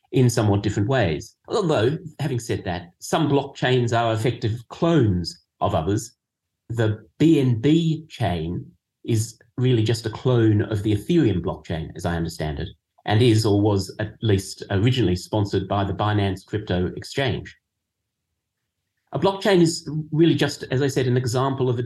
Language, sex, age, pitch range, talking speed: English, male, 30-49, 105-140 Hz, 155 wpm